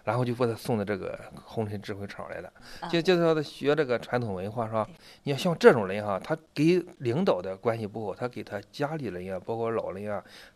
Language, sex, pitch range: Chinese, male, 105-130 Hz